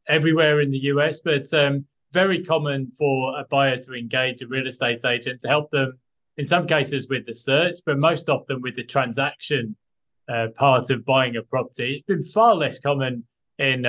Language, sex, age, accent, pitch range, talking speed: English, male, 20-39, British, 125-145 Hz, 190 wpm